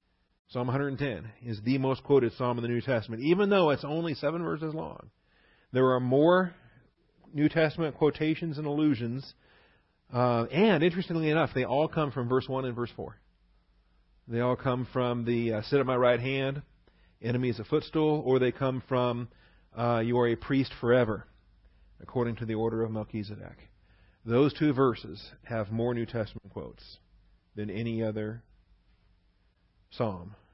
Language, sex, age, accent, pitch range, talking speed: English, male, 40-59, American, 90-130 Hz, 160 wpm